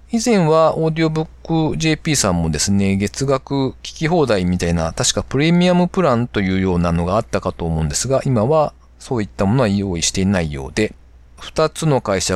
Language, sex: Japanese, male